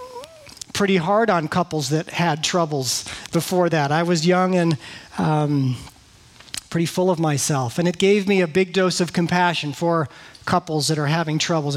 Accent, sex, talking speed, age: American, male, 170 wpm, 40-59